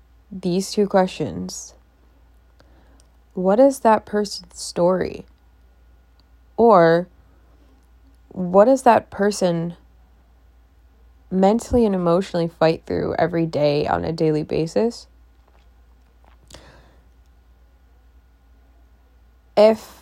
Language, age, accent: English, 20-39, American